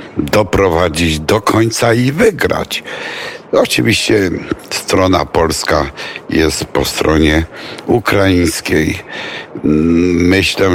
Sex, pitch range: male, 85-105 Hz